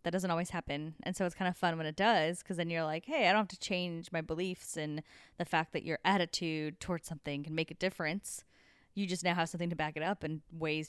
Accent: American